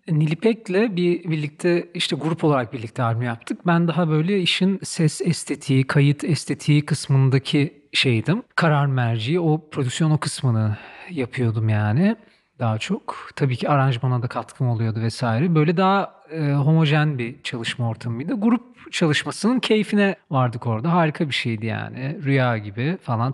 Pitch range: 130-175 Hz